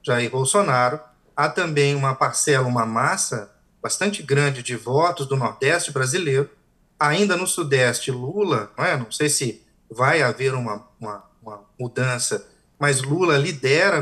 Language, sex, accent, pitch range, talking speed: Portuguese, male, Brazilian, 135-185 Hz, 135 wpm